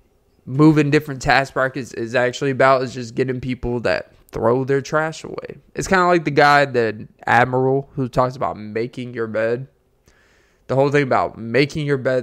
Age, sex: 20-39, male